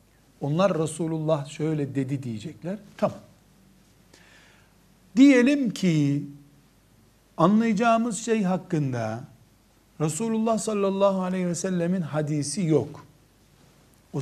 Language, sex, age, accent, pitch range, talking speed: Turkish, male, 60-79, native, 120-180 Hz, 80 wpm